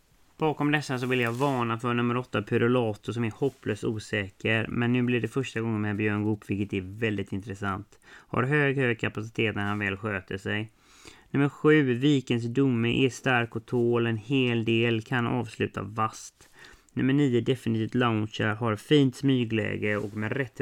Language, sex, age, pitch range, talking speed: English, male, 30-49, 100-125 Hz, 175 wpm